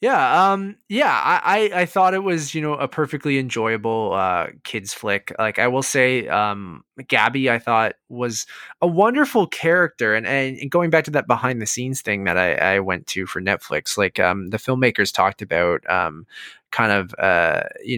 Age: 20-39